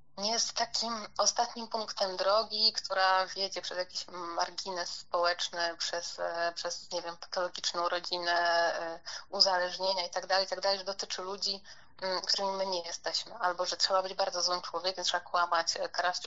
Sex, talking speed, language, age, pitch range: female, 140 wpm, Polish, 30-49, 180-200 Hz